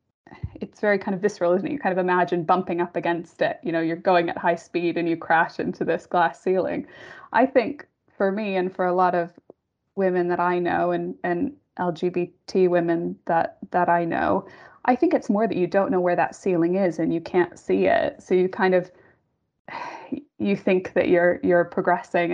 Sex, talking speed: female, 205 wpm